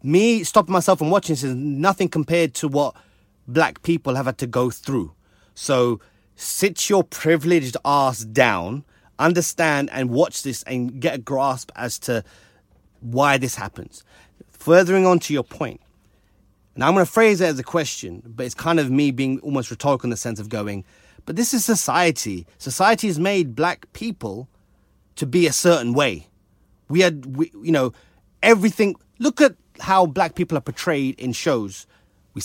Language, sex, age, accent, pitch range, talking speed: English, male, 30-49, British, 120-180 Hz, 170 wpm